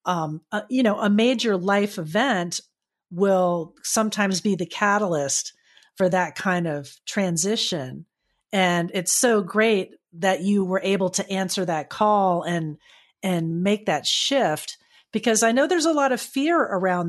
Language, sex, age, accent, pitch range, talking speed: English, female, 40-59, American, 180-225 Hz, 155 wpm